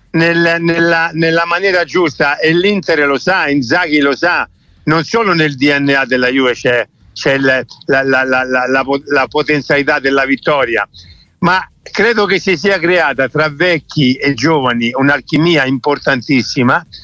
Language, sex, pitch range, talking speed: Italian, male, 140-180 Hz, 140 wpm